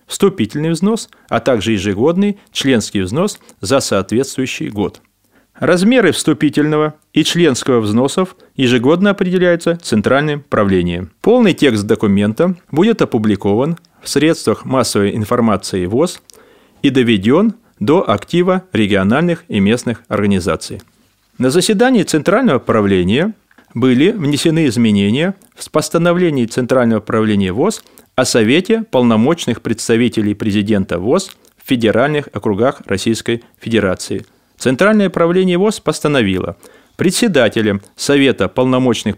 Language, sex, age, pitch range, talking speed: Russian, male, 30-49, 105-165 Hz, 105 wpm